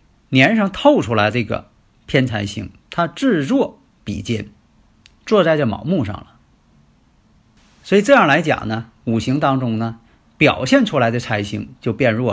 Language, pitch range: Chinese, 110-145 Hz